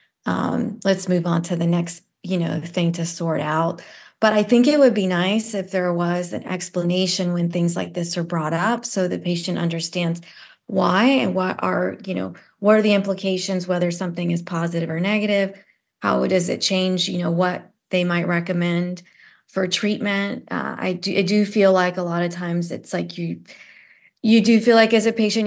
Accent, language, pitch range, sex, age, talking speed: American, English, 175-200 Hz, female, 30-49, 195 wpm